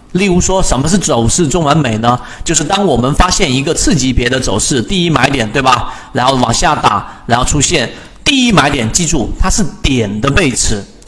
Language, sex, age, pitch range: Chinese, male, 40-59, 120-170 Hz